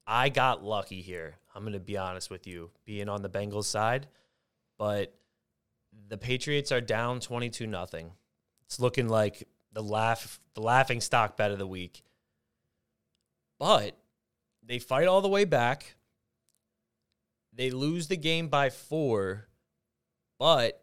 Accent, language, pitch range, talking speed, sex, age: American, English, 100-125 Hz, 140 wpm, male, 20-39